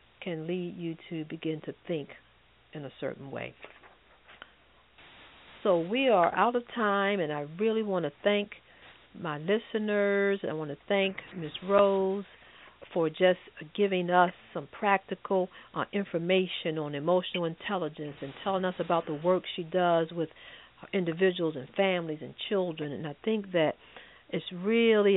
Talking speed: 150 wpm